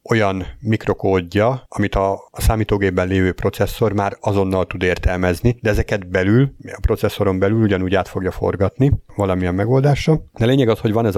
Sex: male